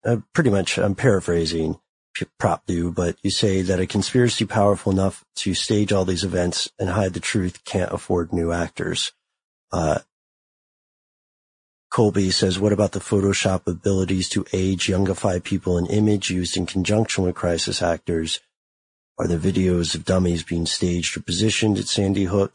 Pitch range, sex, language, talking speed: 90-100 Hz, male, English, 160 wpm